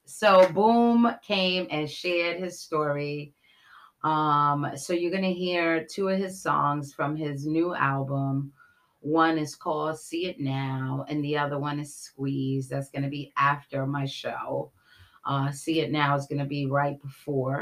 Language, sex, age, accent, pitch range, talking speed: English, female, 30-49, American, 145-170 Hz, 170 wpm